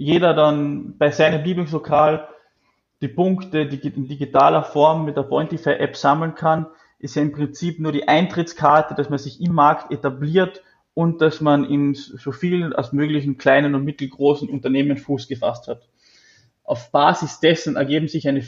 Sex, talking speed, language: male, 160 wpm, German